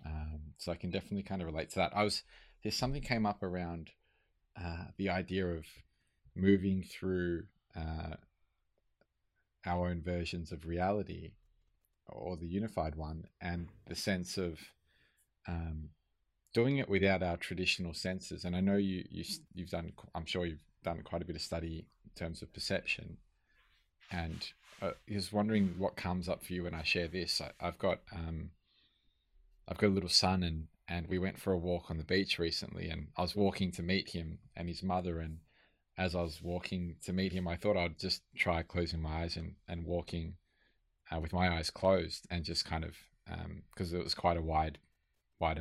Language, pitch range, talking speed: English, 80-95 Hz, 190 wpm